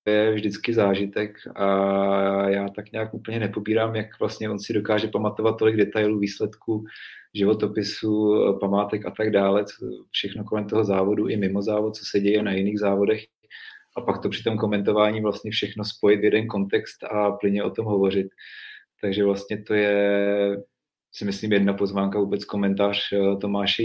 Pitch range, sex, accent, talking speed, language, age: 100-110 Hz, male, native, 165 wpm, Czech, 30-49